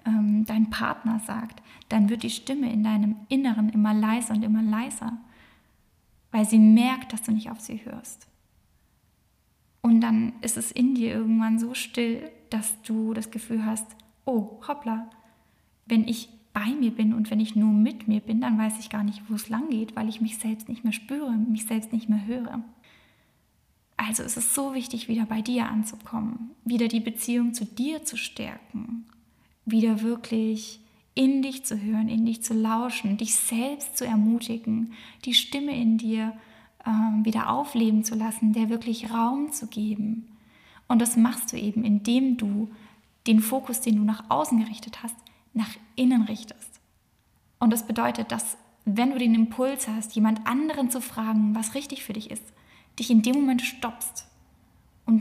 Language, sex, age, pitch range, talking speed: German, female, 10-29, 220-235 Hz, 175 wpm